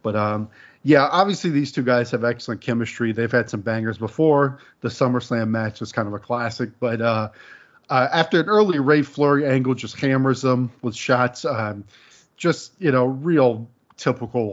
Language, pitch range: English, 110-130 Hz